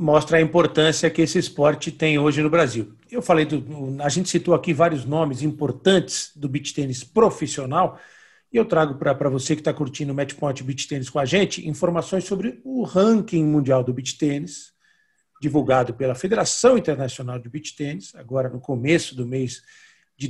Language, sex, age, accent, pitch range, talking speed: Portuguese, male, 50-69, Brazilian, 140-175 Hz, 180 wpm